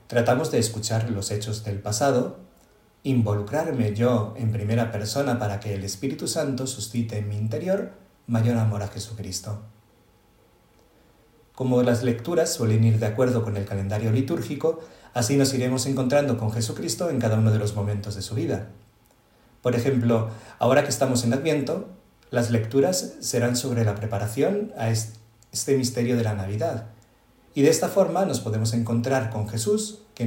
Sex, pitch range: male, 110-135 Hz